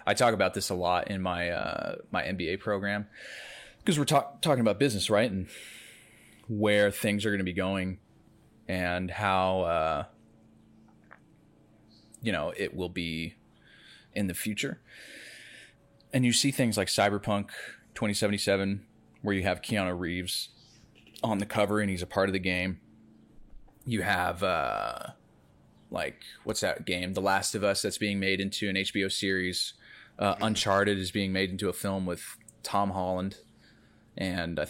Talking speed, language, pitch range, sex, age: 155 wpm, English, 90-110 Hz, male, 20-39